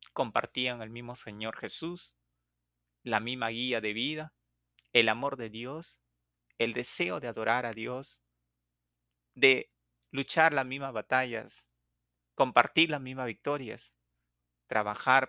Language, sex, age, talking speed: Spanish, male, 40-59, 120 wpm